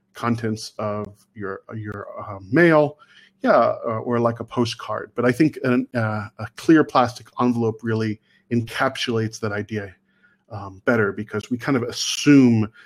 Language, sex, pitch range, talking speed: English, male, 110-135 Hz, 150 wpm